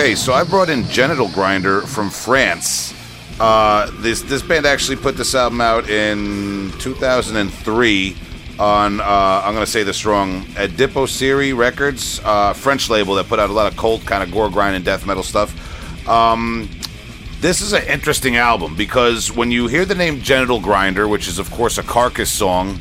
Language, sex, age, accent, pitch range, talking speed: English, male, 40-59, American, 105-130 Hz, 185 wpm